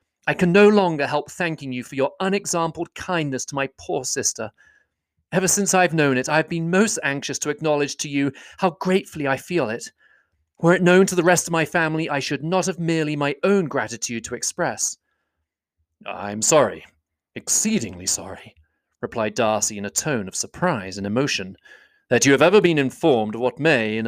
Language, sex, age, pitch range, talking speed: English, male, 30-49, 120-190 Hz, 190 wpm